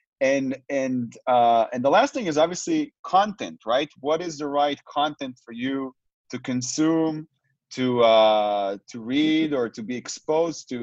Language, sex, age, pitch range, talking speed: English, male, 30-49, 125-155 Hz, 160 wpm